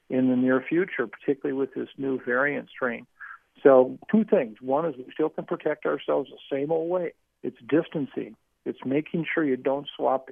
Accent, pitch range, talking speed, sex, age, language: American, 130-145 Hz, 185 wpm, male, 50-69, English